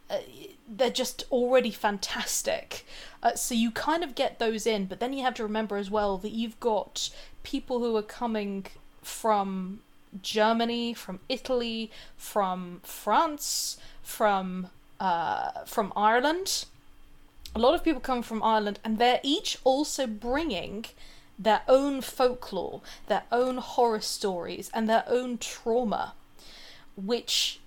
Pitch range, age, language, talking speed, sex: 205-255 Hz, 20-39, English, 130 wpm, female